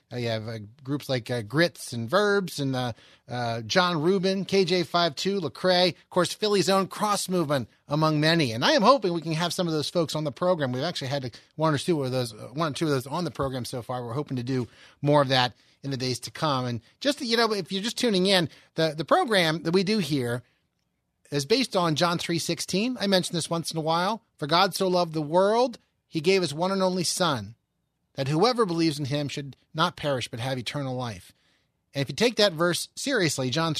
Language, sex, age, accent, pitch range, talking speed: English, male, 30-49, American, 135-185 Hz, 235 wpm